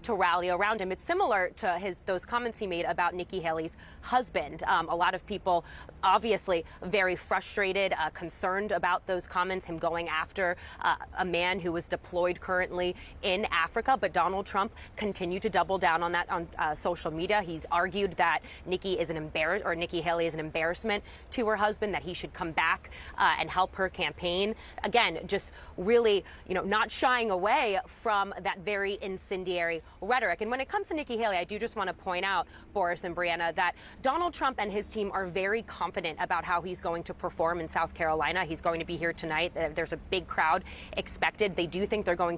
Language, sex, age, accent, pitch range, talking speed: English, female, 20-39, American, 170-205 Hz, 205 wpm